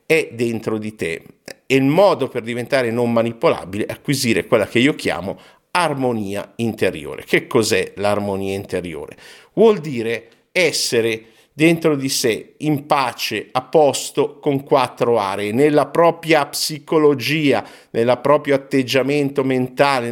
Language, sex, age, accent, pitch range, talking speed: Italian, male, 50-69, native, 115-145 Hz, 130 wpm